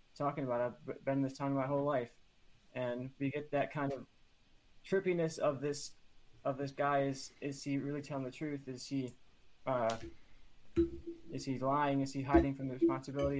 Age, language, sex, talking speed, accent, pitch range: 20-39, English, male, 185 wpm, American, 125-145 Hz